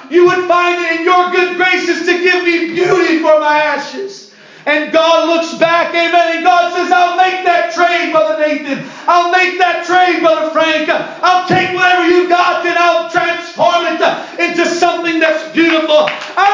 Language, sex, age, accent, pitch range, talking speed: English, male, 40-59, American, 315-360 Hz, 180 wpm